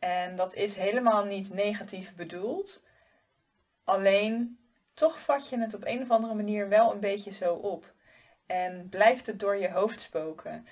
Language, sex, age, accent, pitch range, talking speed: Dutch, female, 20-39, Dutch, 190-230 Hz, 160 wpm